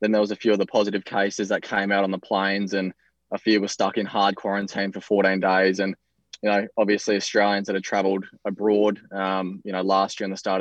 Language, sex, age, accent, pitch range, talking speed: English, male, 20-39, Australian, 95-105 Hz, 245 wpm